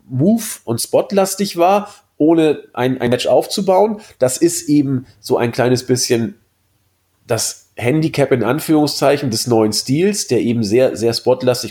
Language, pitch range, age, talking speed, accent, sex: German, 110-145 Hz, 40-59, 145 wpm, German, male